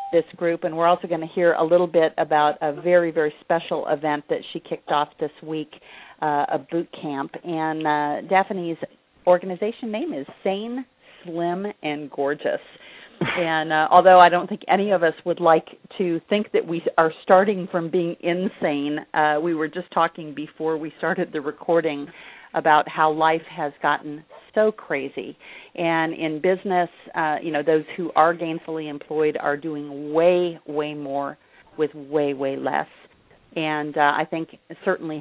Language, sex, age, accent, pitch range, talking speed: English, female, 40-59, American, 150-180 Hz, 170 wpm